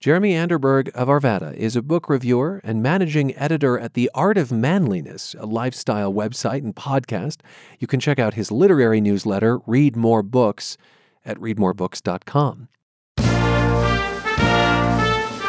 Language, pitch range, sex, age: English, 110-150 Hz, male, 40-59